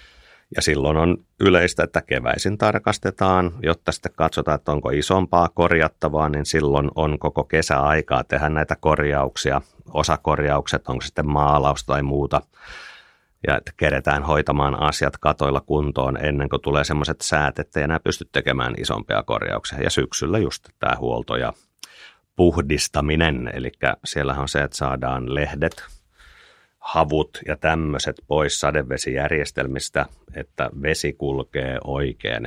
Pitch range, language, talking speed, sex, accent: 70-80 Hz, Finnish, 130 wpm, male, native